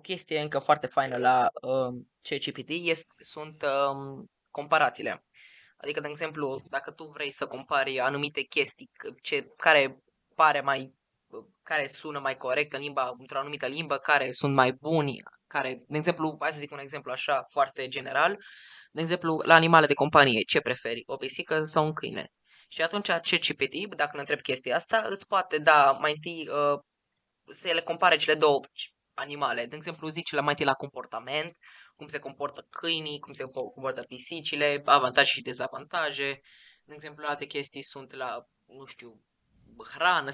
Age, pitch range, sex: 20-39, 135-160 Hz, female